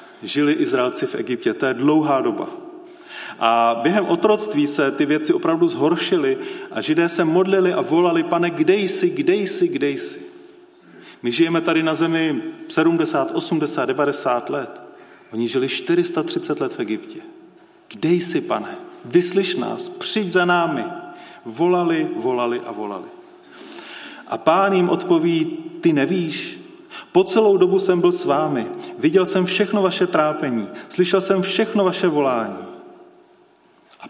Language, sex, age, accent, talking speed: Czech, male, 30-49, native, 140 wpm